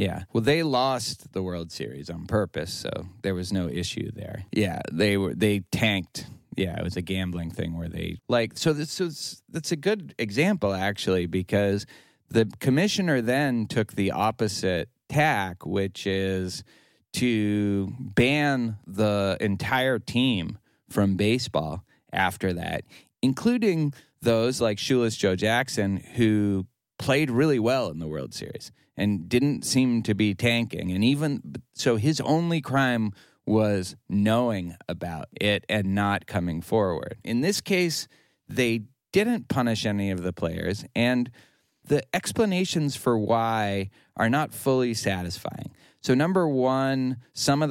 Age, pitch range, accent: 30-49, 95-130 Hz, American